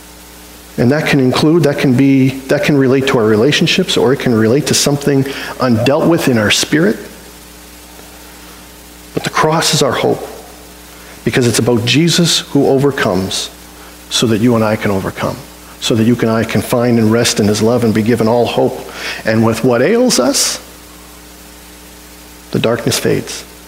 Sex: male